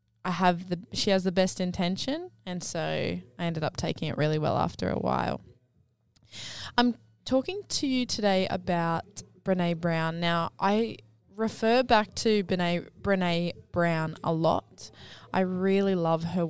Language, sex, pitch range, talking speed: English, female, 160-190 Hz, 150 wpm